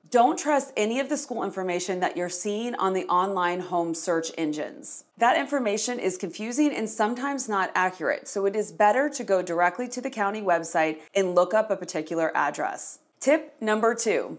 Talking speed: 185 wpm